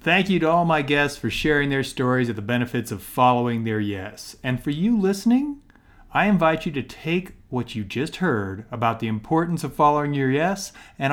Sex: male